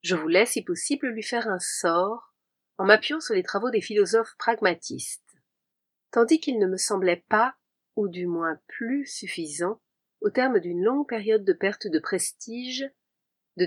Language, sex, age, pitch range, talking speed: French, female, 40-59, 185-250 Hz, 160 wpm